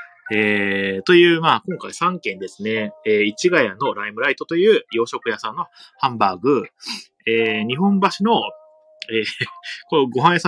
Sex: male